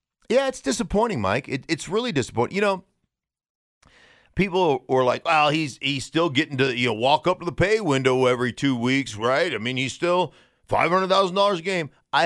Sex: male